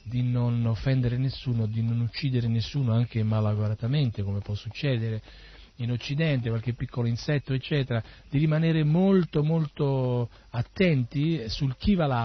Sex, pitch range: male, 115-150 Hz